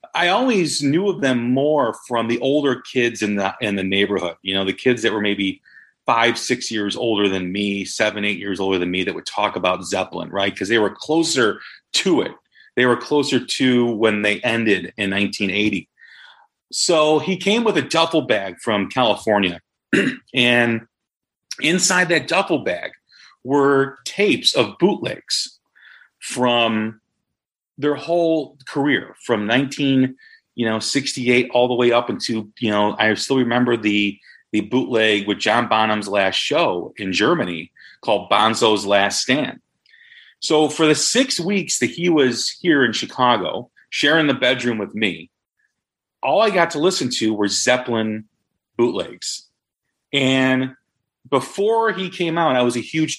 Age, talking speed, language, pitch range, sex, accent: 40-59, 160 wpm, English, 105-145 Hz, male, American